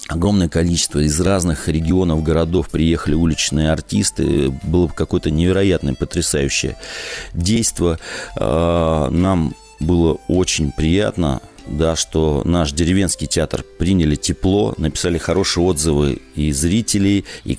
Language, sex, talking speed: Russian, male, 100 wpm